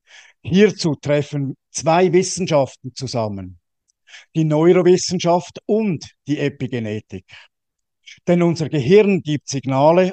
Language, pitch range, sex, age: German, 135-175 Hz, male, 50-69